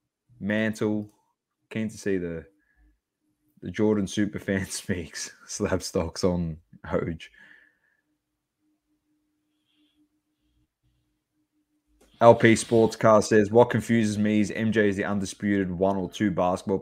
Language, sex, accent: English, male, Australian